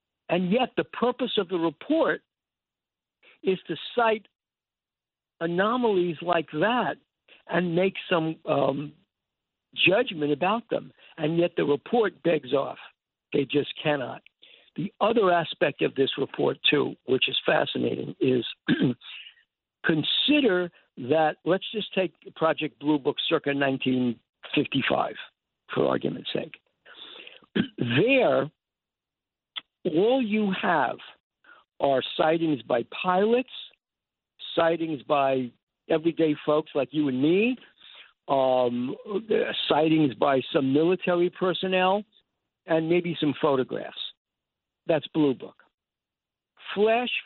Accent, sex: American, male